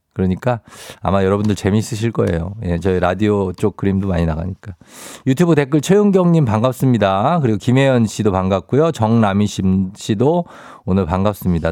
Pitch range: 105-145 Hz